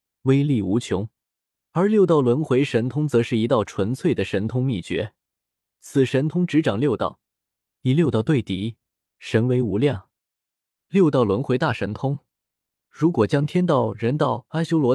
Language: Chinese